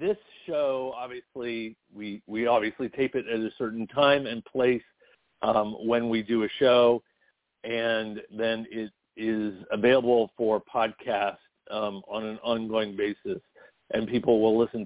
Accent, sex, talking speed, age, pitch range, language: American, male, 145 wpm, 50-69, 110-135 Hz, English